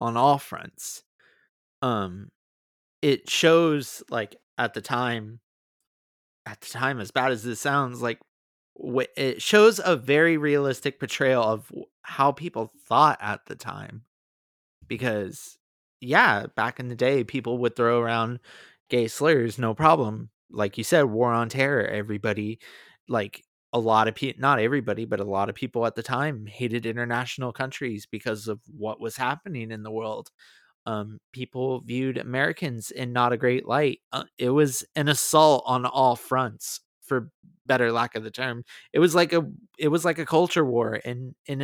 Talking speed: 165 wpm